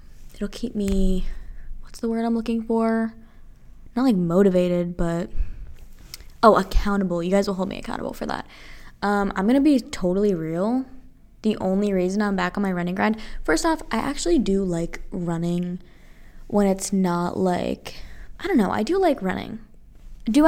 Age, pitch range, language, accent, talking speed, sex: 10-29, 180-235 Hz, English, American, 165 wpm, female